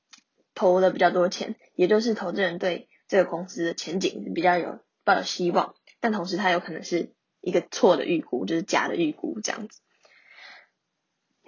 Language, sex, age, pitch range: Chinese, female, 10-29, 175-215 Hz